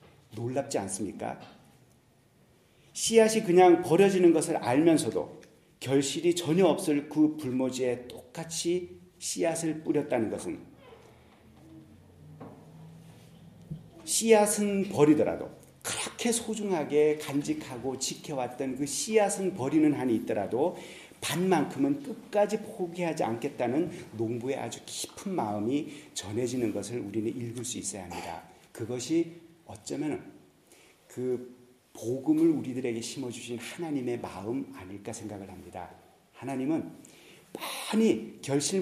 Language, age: Korean, 40-59